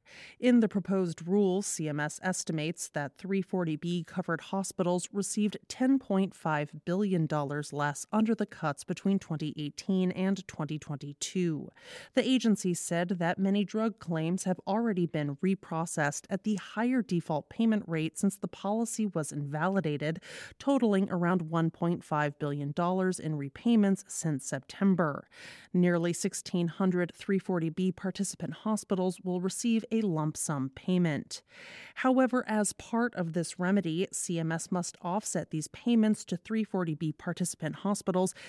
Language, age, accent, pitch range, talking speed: English, 30-49, American, 165-205 Hz, 120 wpm